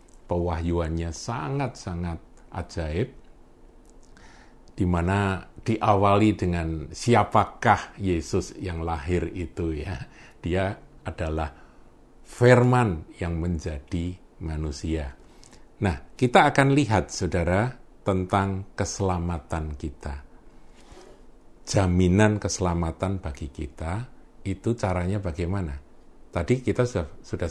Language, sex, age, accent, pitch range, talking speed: Indonesian, male, 50-69, native, 85-110 Hz, 80 wpm